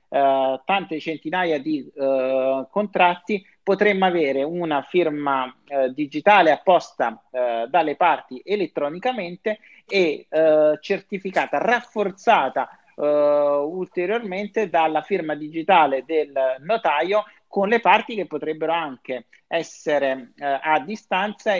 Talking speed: 85 wpm